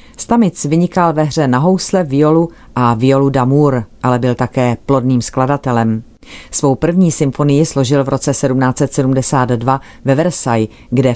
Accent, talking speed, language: native, 135 wpm, Czech